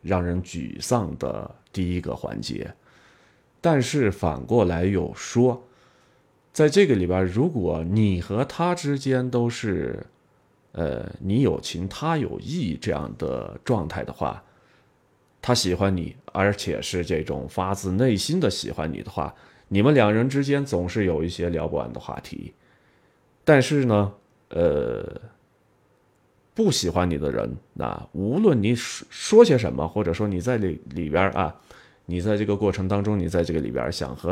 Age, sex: 30-49, male